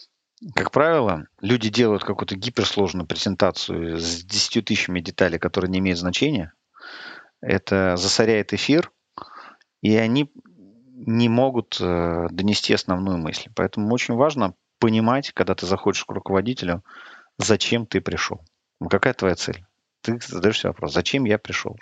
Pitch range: 90-120 Hz